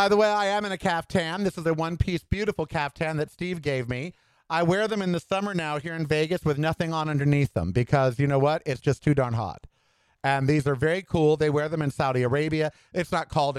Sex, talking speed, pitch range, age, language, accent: male, 245 wpm, 130-165 Hz, 50-69, English, American